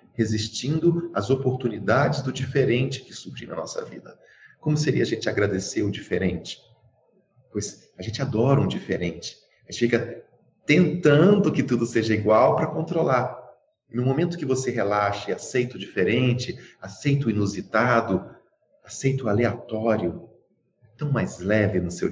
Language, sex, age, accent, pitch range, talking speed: Portuguese, male, 40-59, Brazilian, 110-150 Hz, 150 wpm